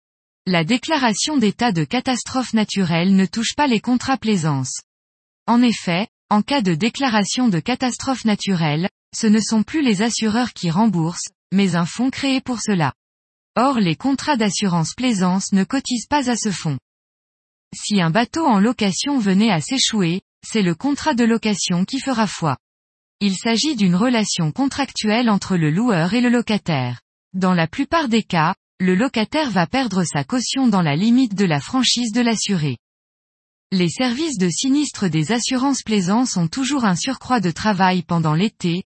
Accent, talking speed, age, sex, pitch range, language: French, 165 wpm, 20-39, female, 180-245 Hz, French